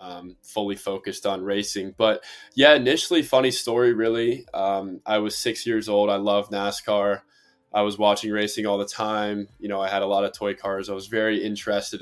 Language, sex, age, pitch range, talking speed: English, male, 20-39, 100-110 Hz, 200 wpm